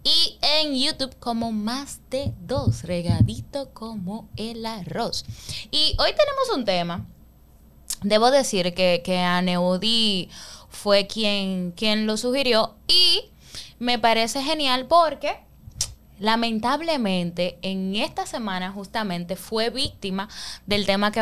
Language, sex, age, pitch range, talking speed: Spanish, female, 10-29, 185-250 Hz, 115 wpm